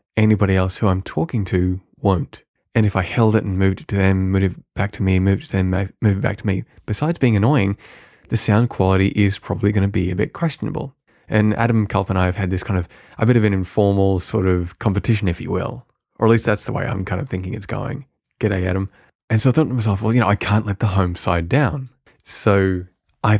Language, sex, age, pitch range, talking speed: English, male, 20-39, 95-115 Hz, 250 wpm